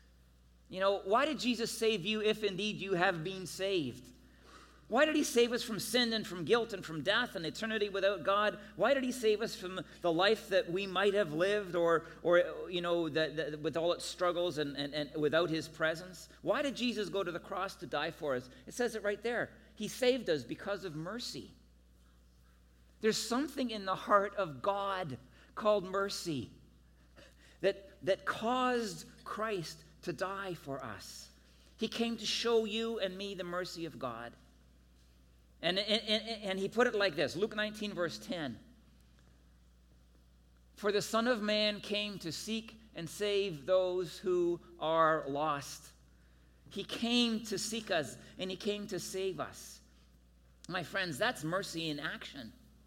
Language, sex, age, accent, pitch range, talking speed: English, male, 50-69, American, 150-210 Hz, 170 wpm